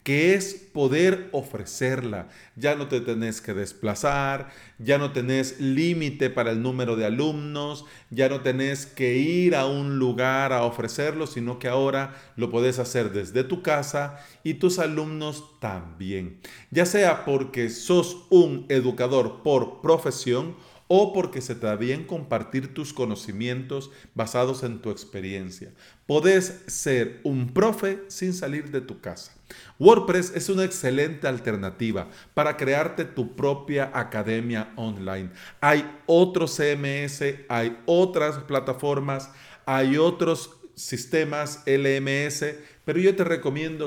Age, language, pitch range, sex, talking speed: 40-59, Spanish, 125-155 Hz, male, 135 wpm